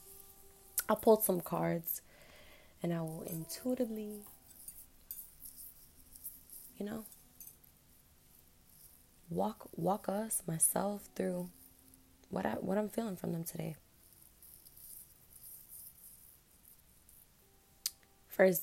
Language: English